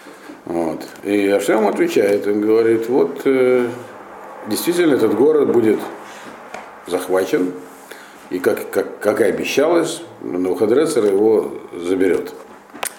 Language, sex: Russian, male